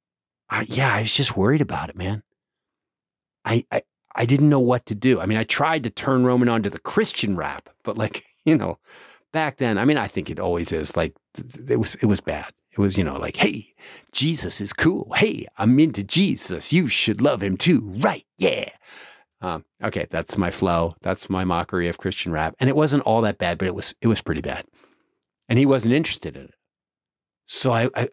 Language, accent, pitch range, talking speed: English, American, 95-125 Hz, 220 wpm